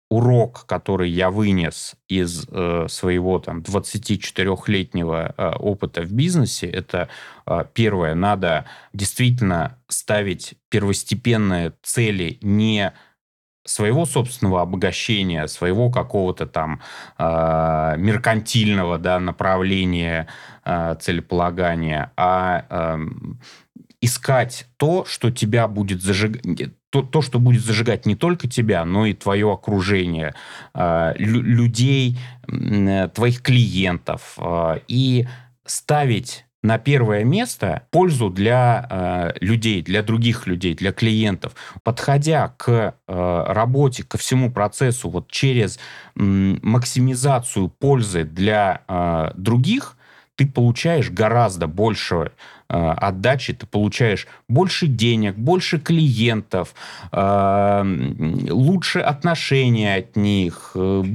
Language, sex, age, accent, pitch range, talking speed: Russian, male, 30-49, native, 95-125 Hz, 95 wpm